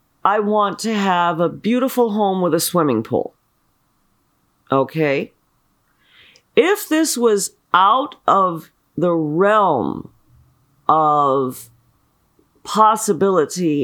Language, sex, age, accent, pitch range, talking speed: English, female, 40-59, American, 145-205 Hz, 90 wpm